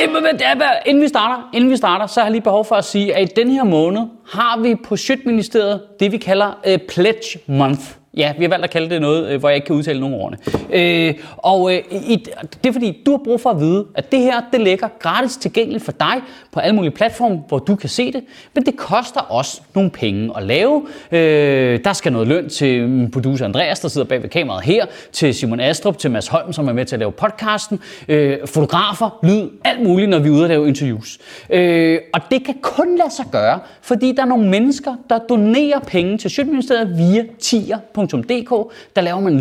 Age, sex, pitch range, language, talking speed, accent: 30-49, male, 160-235 Hz, Danish, 215 wpm, native